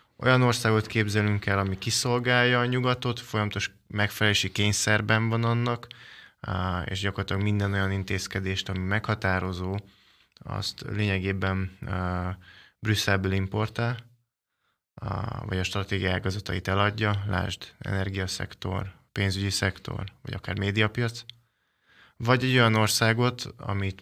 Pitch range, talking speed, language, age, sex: 95-115 Hz, 100 wpm, Hungarian, 20-39, male